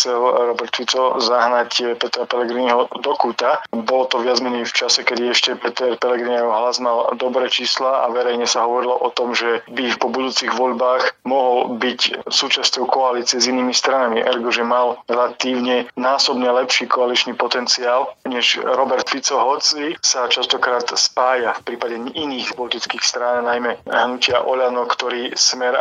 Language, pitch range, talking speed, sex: Slovak, 120-130 Hz, 150 wpm, male